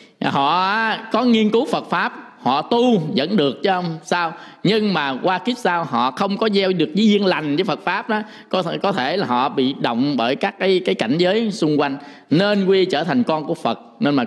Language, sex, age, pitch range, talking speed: Vietnamese, male, 20-39, 145-200 Hz, 230 wpm